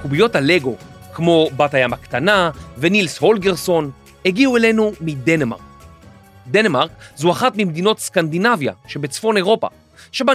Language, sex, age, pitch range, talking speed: Hebrew, male, 40-59, 150-215 Hz, 110 wpm